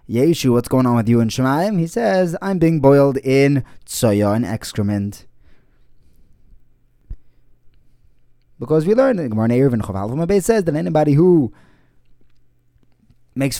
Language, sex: English, male